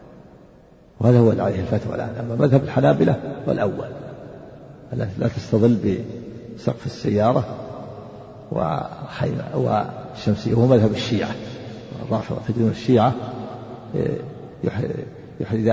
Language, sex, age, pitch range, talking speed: Arabic, male, 50-69, 105-125 Hz, 90 wpm